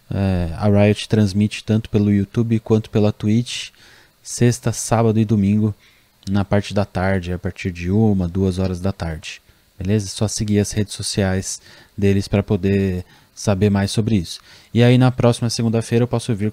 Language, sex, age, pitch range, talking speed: Portuguese, male, 20-39, 100-120 Hz, 170 wpm